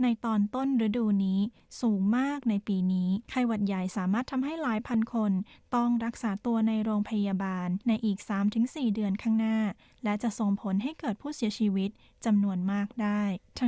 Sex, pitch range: female, 205-235 Hz